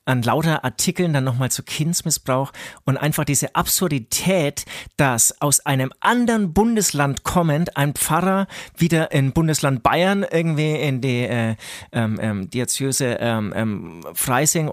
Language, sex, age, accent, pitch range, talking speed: German, male, 30-49, German, 125-160 Hz, 130 wpm